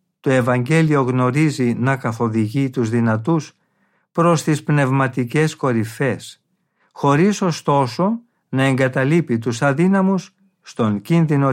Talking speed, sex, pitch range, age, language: 100 wpm, male, 130-175 Hz, 50-69, Greek